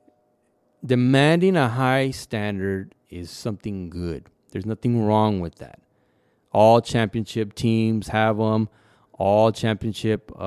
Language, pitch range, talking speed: English, 100-125 Hz, 110 wpm